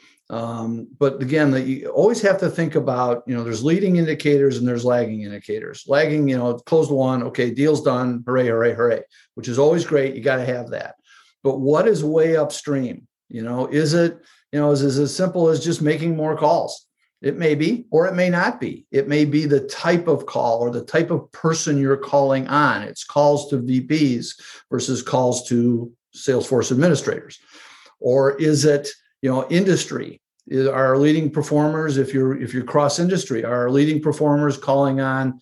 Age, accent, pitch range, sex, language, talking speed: 50-69, American, 130-160 Hz, male, English, 190 wpm